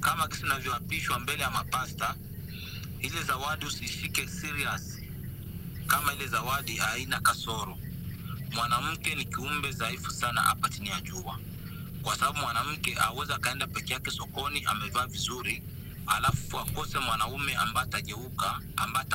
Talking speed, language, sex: 115 wpm, Swahili, male